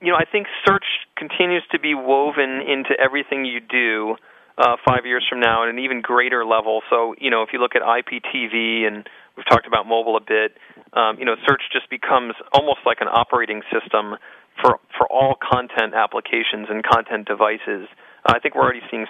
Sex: male